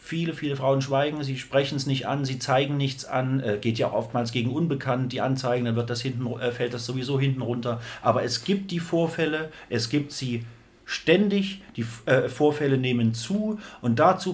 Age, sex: 40-59, male